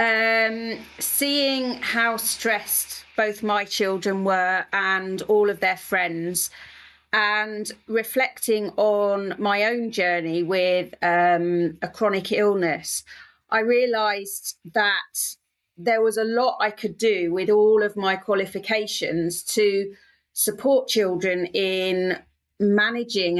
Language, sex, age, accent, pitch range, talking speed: English, female, 40-59, British, 175-215 Hz, 115 wpm